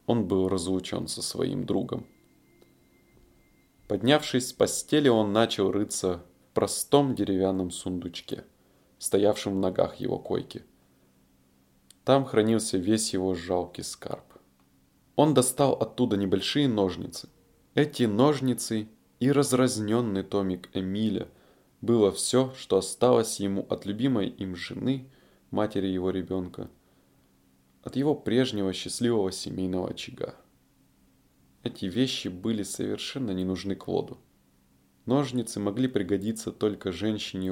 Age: 20-39